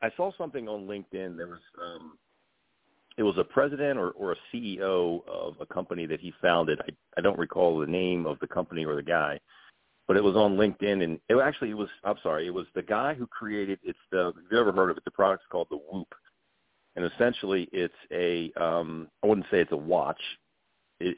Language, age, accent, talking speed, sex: English, 40-59, American, 220 wpm, male